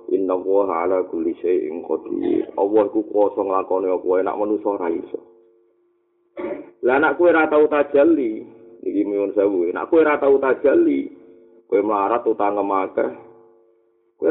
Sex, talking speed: male, 145 wpm